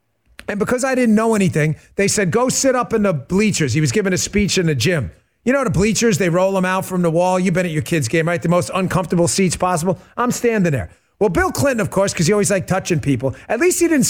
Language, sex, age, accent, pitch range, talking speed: English, male, 40-59, American, 180-275 Hz, 270 wpm